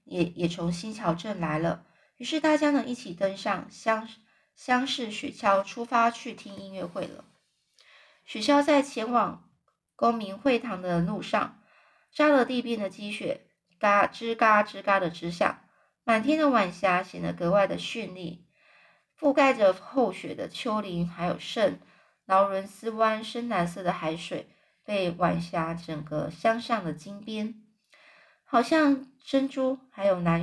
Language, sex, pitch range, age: Chinese, female, 185-240 Hz, 20-39